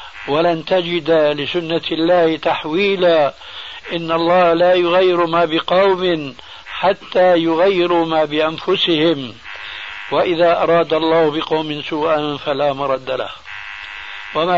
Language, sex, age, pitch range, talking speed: Arabic, male, 60-79, 155-185 Hz, 100 wpm